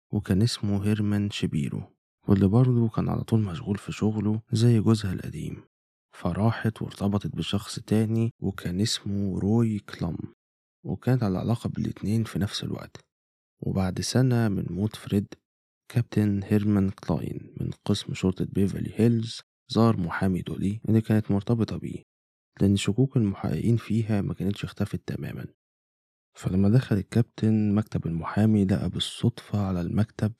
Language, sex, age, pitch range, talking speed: Arabic, male, 20-39, 95-110 Hz, 130 wpm